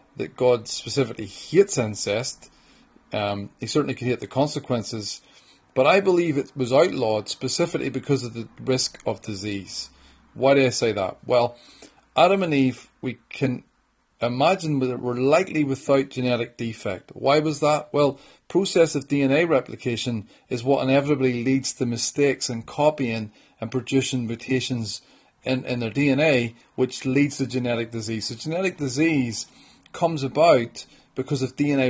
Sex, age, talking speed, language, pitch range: male, 40-59, 150 wpm, English, 115-140 Hz